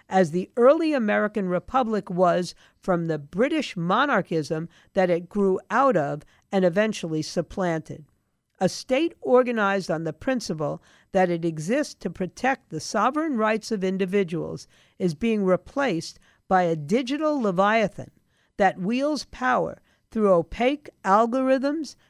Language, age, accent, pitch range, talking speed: English, 50-69, American, 180-250 Hz, 130 wpm